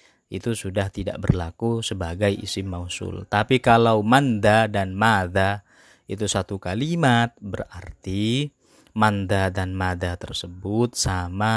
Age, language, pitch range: 20-39, Indonesian, 95-120 Hz